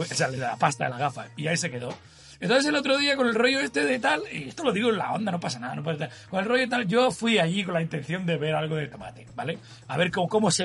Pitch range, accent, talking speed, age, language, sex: 140-195 Hz, Spanish, 320 wpm, 30-49, Spanish, male